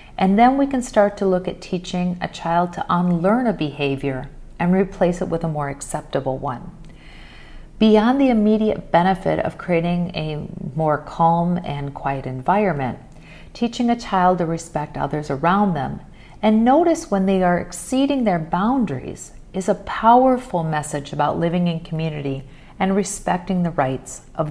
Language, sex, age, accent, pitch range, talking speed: English, female, 40-59, American, 145-200 Hz, 155 wpm